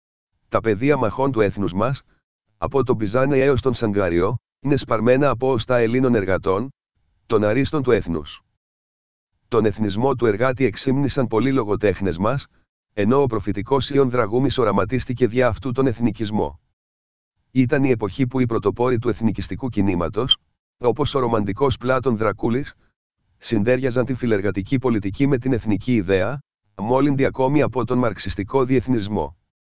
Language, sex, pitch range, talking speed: Greek, male, 105-130 Hz, 135 wpm